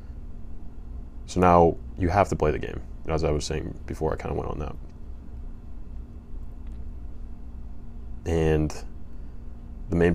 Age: 20-39